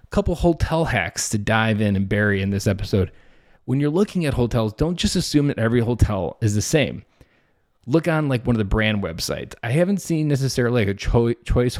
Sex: male